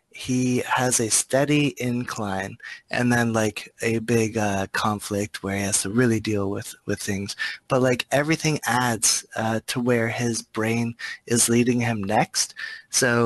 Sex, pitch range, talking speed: male, 110-125 Hz, 160 wpm